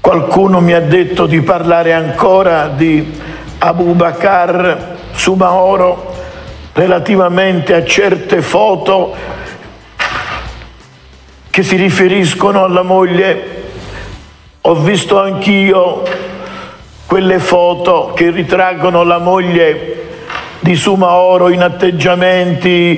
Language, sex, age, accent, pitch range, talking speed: Italian, male, 50-69, native, 175-205 Hz, 85 wpm